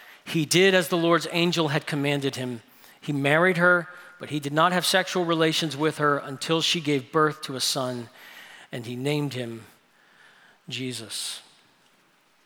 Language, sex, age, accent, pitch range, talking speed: English, male, 50-69, American, 145-180 Hz, 160 wpm